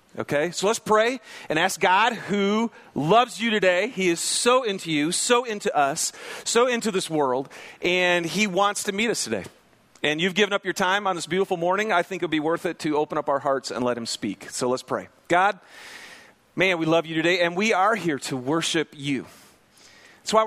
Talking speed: 215 wpm